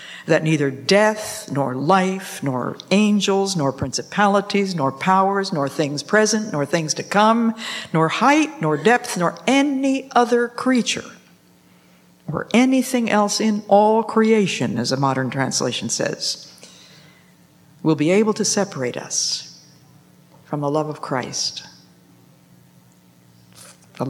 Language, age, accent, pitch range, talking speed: English, 60-79, American, 130-195 Hz, 120 wpm